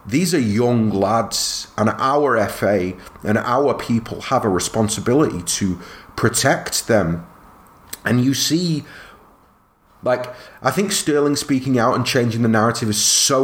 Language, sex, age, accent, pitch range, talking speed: English, male, 30-49, British, 100-130 Hz, 140 wpm